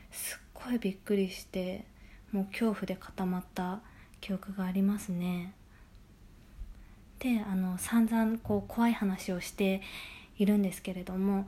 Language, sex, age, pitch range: Japanese, female, 20-39, 190-245 Hz